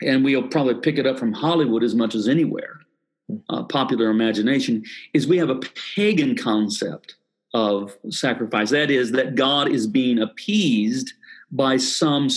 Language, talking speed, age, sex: English, 155 wpm, 50-69, male